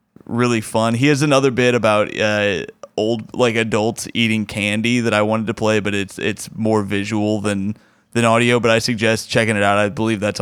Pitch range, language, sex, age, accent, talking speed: 110-130 Hz, English, male, 20-39, American, 200 wpm